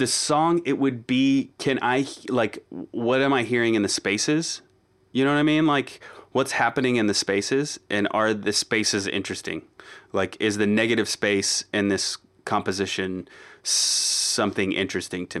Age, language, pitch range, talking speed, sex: 30-49, English, 95-115 Hz, 165 wpm, male